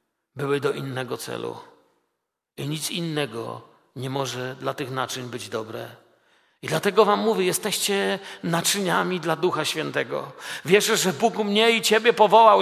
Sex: male